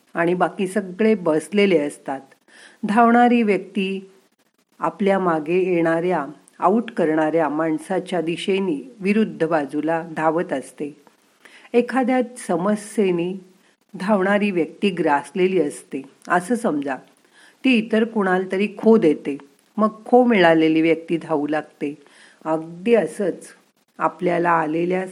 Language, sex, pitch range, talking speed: Marathi, female, 160-210 Hz, 100 wpm